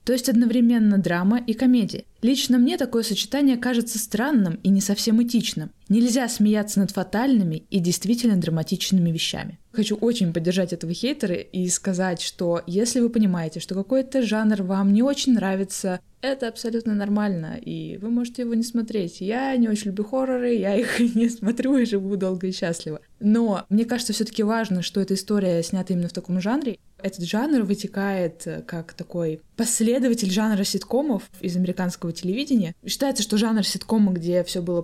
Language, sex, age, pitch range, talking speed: Russian, female, 20-39, 180-230 Hz, 165 wpm